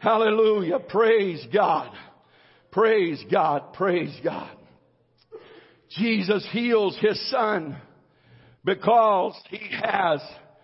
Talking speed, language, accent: 80 wpm, English, American